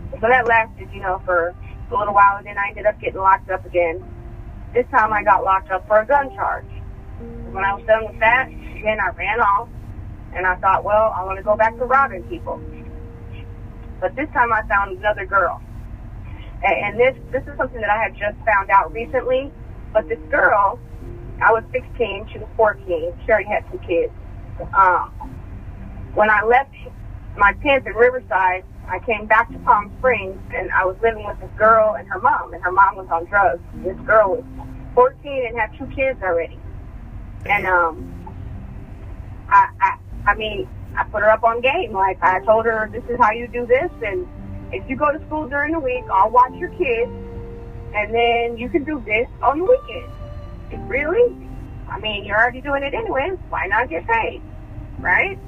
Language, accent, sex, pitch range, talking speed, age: English, American, female, 180-265 Hz, 195 wpm, 30-49